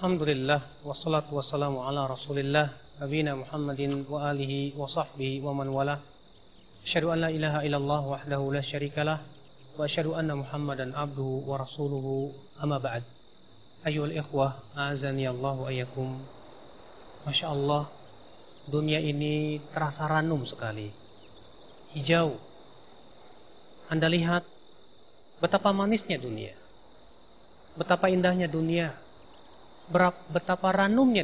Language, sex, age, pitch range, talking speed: Indonesian, male, 30-49, 135-170 Hz, 100 wpm